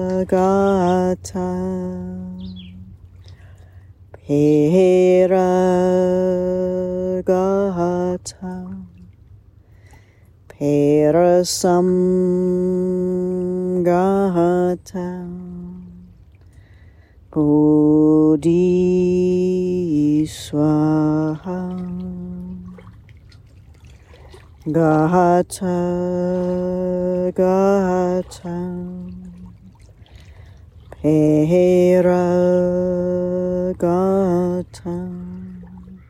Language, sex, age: English, female, 30-49